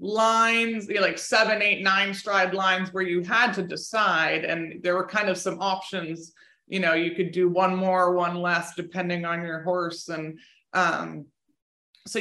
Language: English